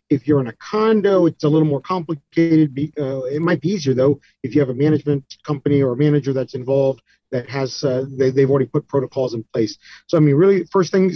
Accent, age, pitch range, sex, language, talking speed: American, 40-59, 135-150 Hz, male, English, 225 wpm